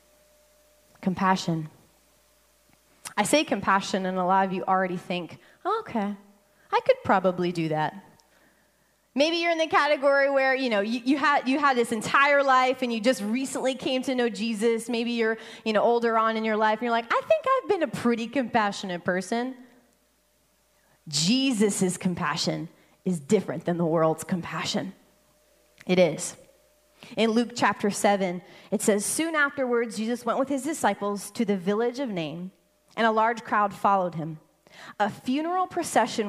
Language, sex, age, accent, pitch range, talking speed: English, female, 20-39, American, 190-265 Hz, 160 wpm